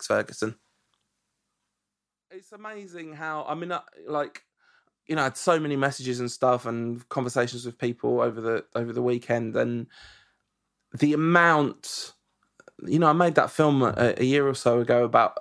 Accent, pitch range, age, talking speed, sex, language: British, 125-150 Hz, 20-39, 165 wpm, male, English